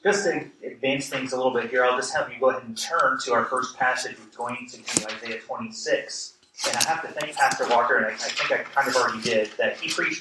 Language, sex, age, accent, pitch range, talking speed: English, male, 30-49, American, 125-165 Hz, 255 wpm